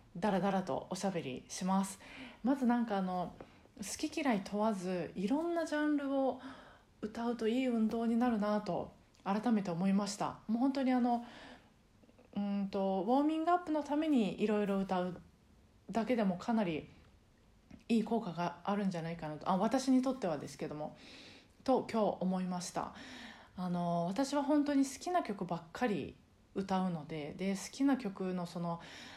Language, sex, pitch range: Japanese, female, 180-245 Hz